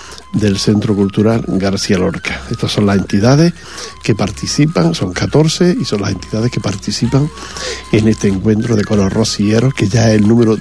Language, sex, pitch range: Portuguese, male, 105-125 Hz